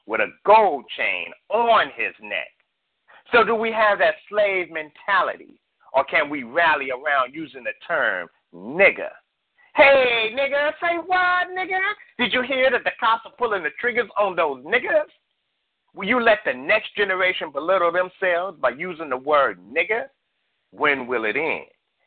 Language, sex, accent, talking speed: English, male, American, 160 wpm